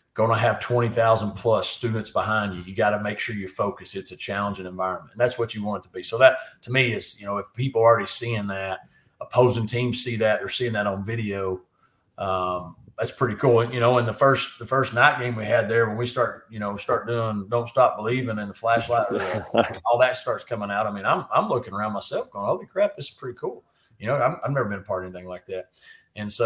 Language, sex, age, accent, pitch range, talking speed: English, male, 30-49, American, 105-120 Hz, 250 wpm